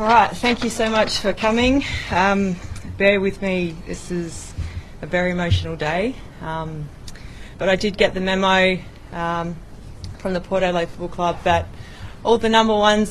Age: 20-39